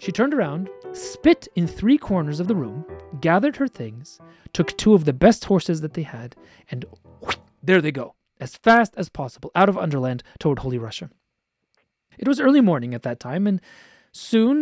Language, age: English, 30-49